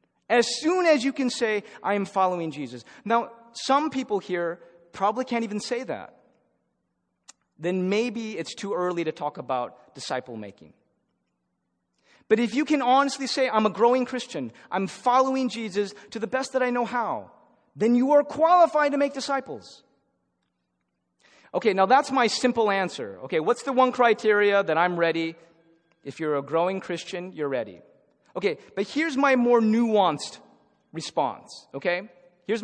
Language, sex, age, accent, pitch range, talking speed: English, male, 30-49, American, 165-245 Hz, 155 wpm